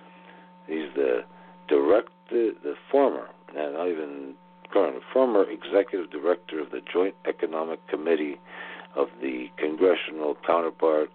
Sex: male